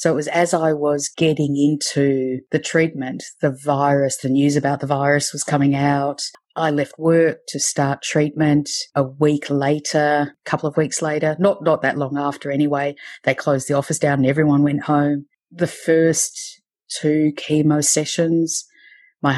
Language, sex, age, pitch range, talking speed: English, female, 30-49, 130-150 Hz, 170 wpm